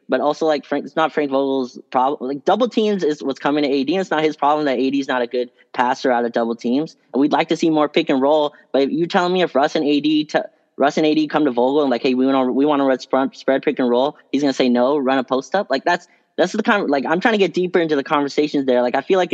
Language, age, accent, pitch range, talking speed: English, 10-29, American, 125-155 Hz, 310 wpm